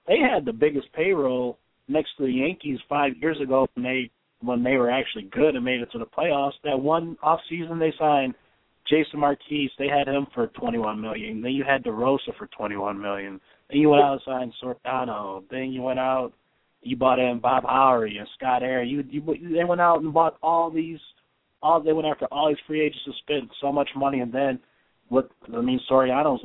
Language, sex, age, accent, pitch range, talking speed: English, male, 20-39, American, 115-145 Hz, 215 wpm